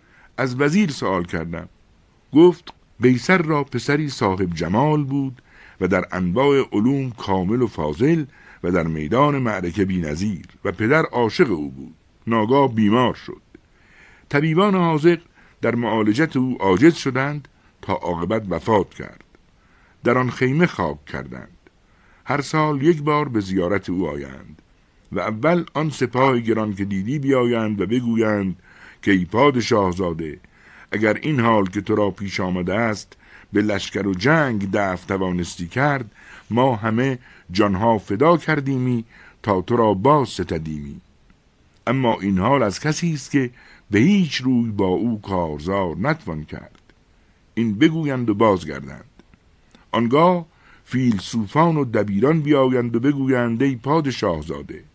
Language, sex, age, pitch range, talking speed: Persian, male, 60-79, 95-140 Hz, 135 wpm